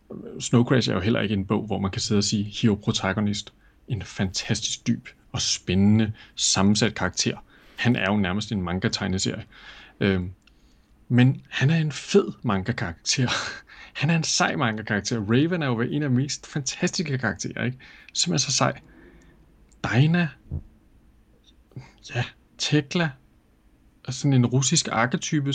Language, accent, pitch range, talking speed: Danish, native, 115-165 Hz, 145 wpm